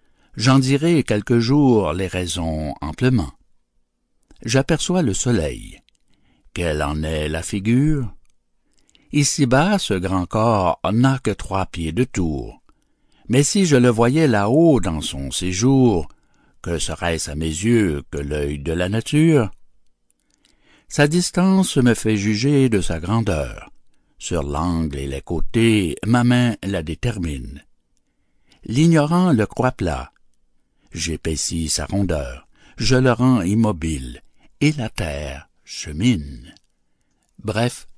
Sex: male